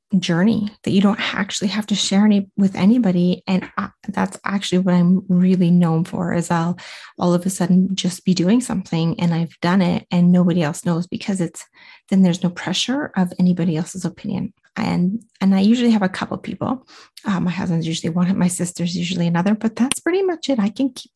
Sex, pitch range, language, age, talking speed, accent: female, 175-205 Hz, English, 30-49, 210 wpm, American